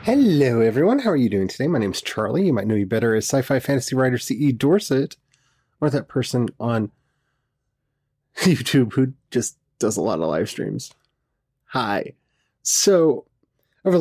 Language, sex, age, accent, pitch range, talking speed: English, male, 30-49, American, 115-155 Hz, 165 wpm